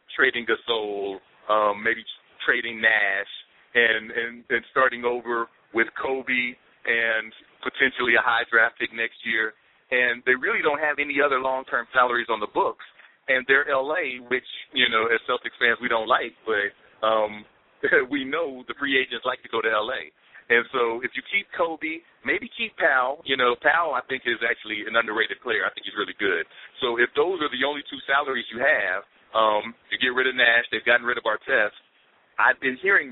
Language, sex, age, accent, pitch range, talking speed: English, male, 40-59, American, 115-135 Hz, 190 wpm